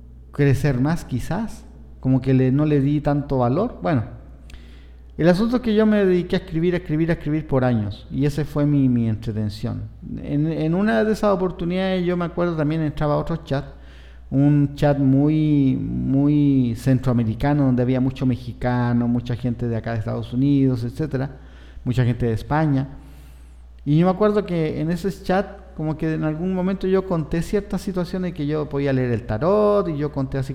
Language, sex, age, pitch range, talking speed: Spanish, male, 50-69, 115-160 Hz, 185 wpm